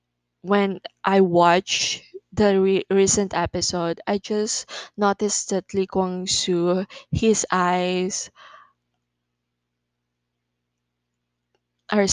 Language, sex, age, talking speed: Filipino, female, 20-39, 80 wpm